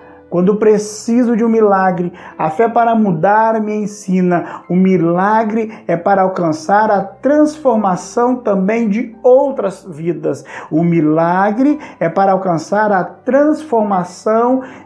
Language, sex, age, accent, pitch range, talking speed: English, male, 50-69, Brazilian, 190-230 Hz, 115 wpm